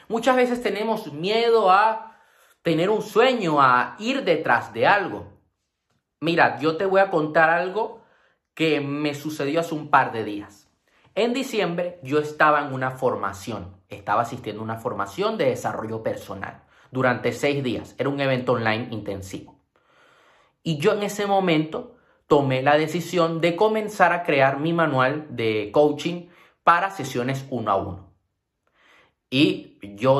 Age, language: 30-49, Spanish